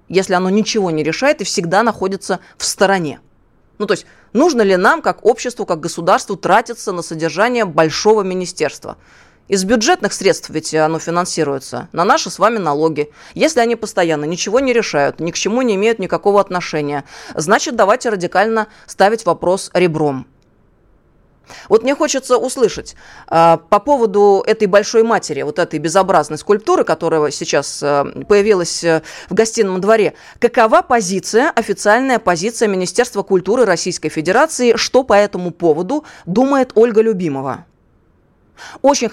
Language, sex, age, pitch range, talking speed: Russian, female, 20-39, 165-230 Hz, 140 wpm